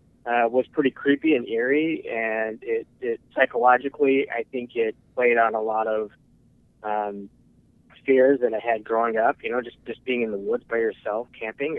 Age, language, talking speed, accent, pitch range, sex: 30-49, English, 185 wpm, American, 110-135 Hz, male